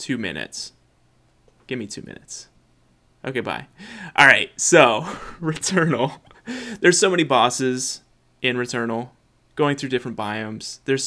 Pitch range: 115-145 Hz